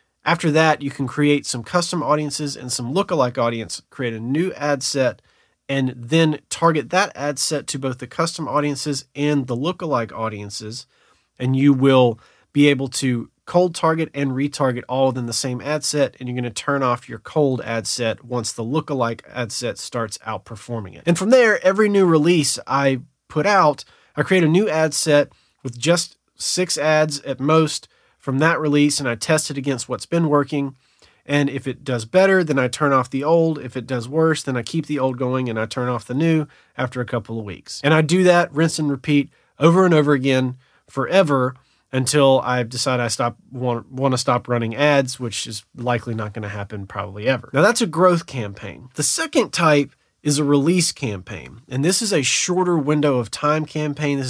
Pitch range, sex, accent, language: 125-155 Hz, male, American, English